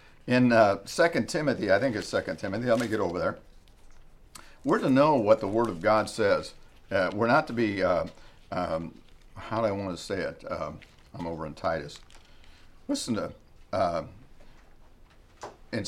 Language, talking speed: English, 175 wpm